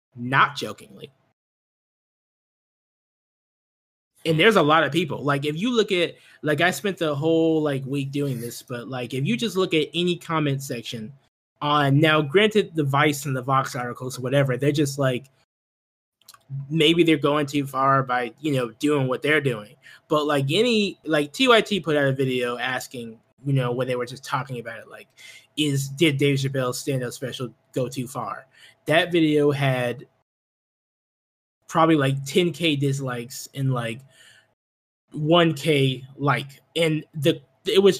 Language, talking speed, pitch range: English, 165 wpm, 130-160 Hz